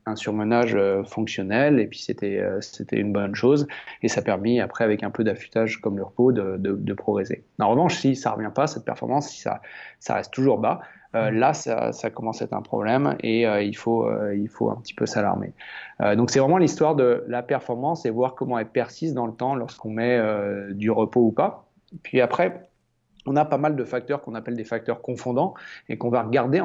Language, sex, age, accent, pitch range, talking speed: French, male, 30-49, French, 110-125 Hz, 225 wpm